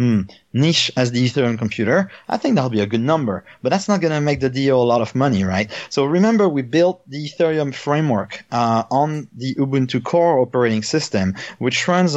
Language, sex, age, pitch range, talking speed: English, male, 30-49, 115-140 Hz, 200 wpm